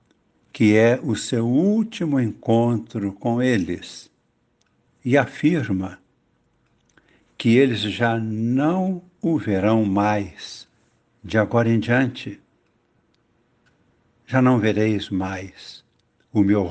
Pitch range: 105-135 Hz